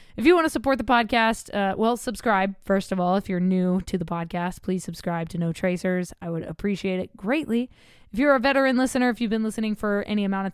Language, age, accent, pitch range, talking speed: English, 20-39, American, 195-255 Hz, 240 wpm